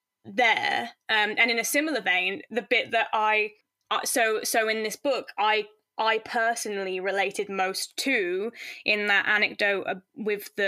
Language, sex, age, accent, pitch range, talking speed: English, female, 10-29, British, 200-230 Hz, 155 wpm